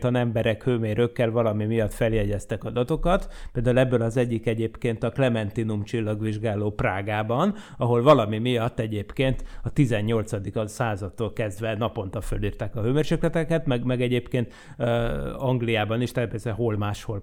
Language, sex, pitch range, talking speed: Hungarian, male, 115-150 Hz, 130 wpm